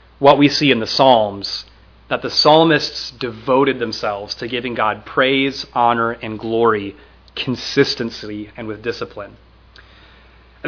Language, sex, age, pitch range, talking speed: English, male, 30-49, 115-170 Hz, 130 wpm